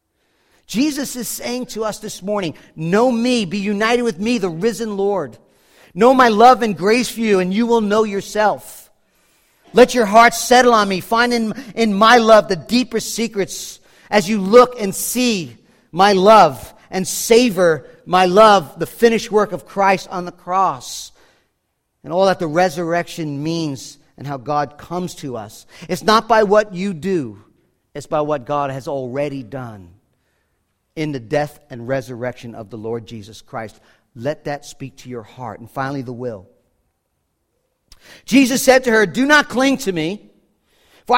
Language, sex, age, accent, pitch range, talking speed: English, male, 40-59, American, 155-230 Hz, 170 wpm